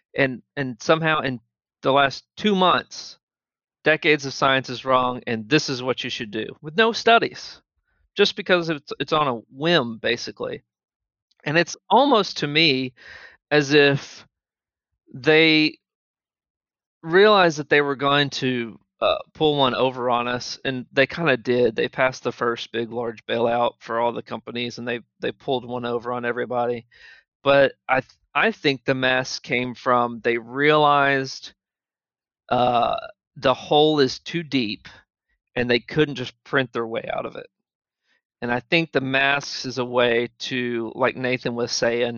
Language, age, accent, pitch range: English, 40-59, American, 120-150 Hz